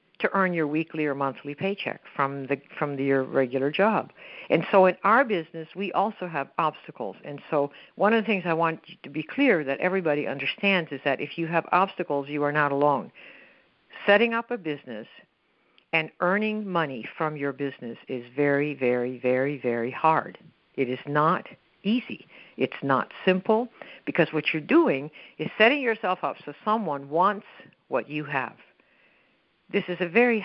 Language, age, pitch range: English, 60-79, 145-200 Hz